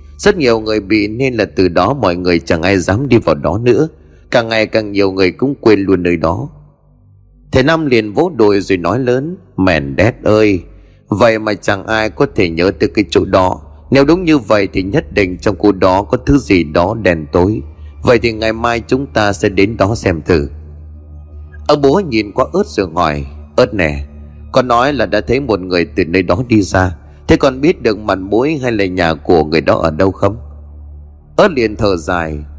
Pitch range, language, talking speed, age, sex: 85-120 Hz, Vietnamese, 215 wpm, 30-49, male